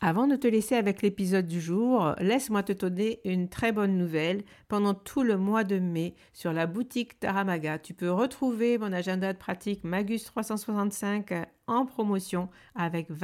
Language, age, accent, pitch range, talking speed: French, 60-79, French, 175-215 Hz, 170 wpm